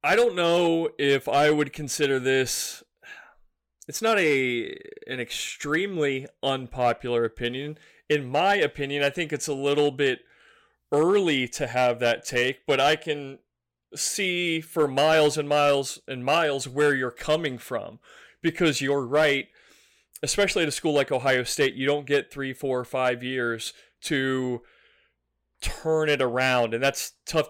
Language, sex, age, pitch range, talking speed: English, male, 30-49, 125-150 Hz, 145 wpm